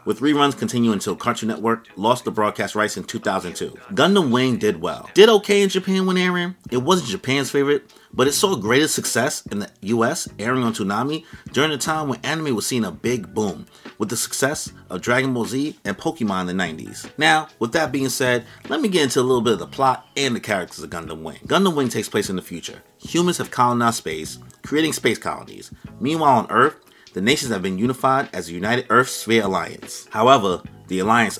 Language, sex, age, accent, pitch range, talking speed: English, male, 30-49, American, 105-135 Hz, 210 wpm